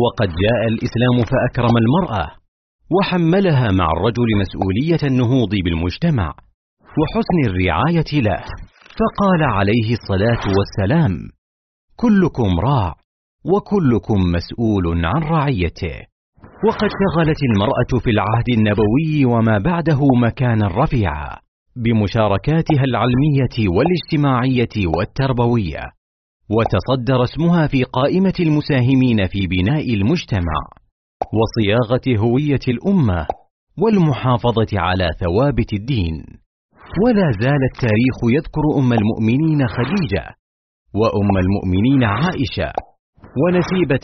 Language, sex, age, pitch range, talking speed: Arabic, male, 40-59, 100-145 Hz, 85 wpm